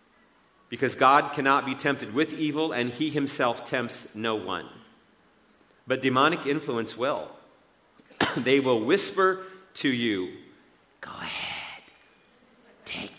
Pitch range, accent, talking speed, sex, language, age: 130-155 Hz, American, 115 wpm, male, English, 40-59